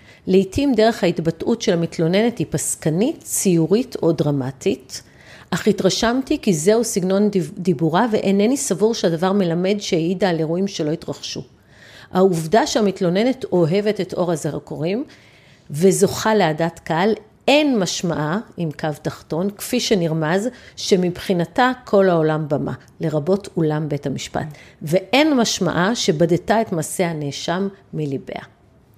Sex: female